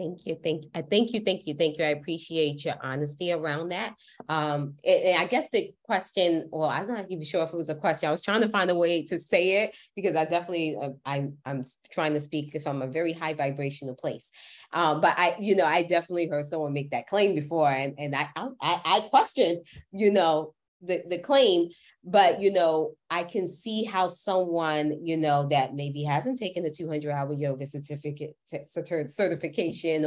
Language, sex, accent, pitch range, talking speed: English, female, American, 150-185 Hz, 215 wpm